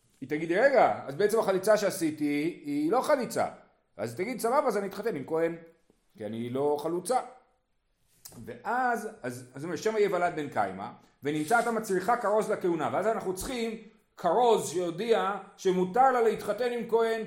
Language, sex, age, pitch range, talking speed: Hebrew, male, 40-59, 160-230 Hz, 155 wpm